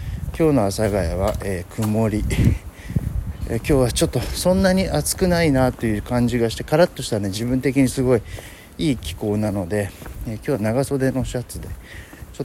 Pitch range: 95-135 Hz